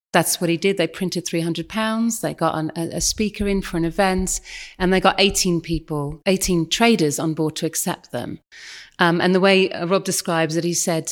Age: 30-49